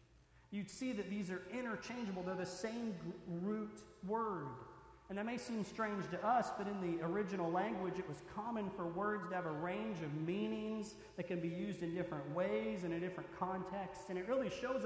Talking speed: 200 wpm